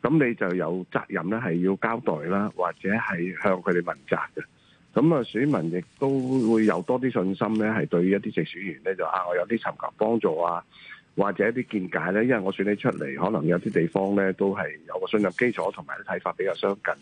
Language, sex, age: Chinese, male, 50-69